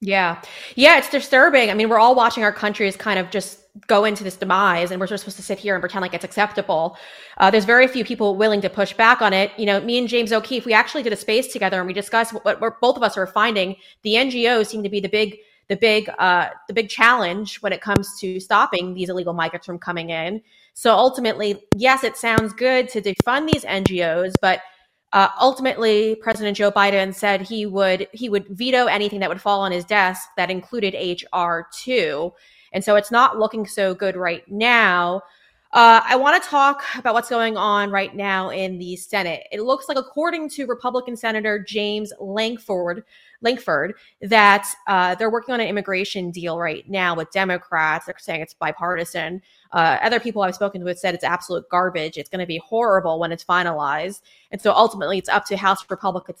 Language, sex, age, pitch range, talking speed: English, female, 20-39, 185-230 Hz, 210 wpm